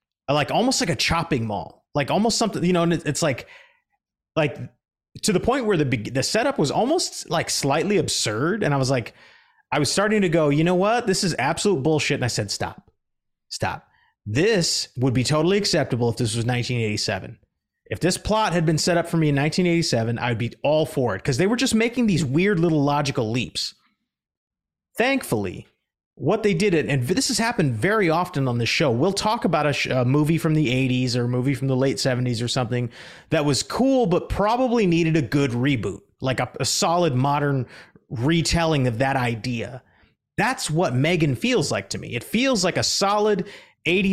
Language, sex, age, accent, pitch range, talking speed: English, male, 30-49, American, 130-175 Hz, 195 wpm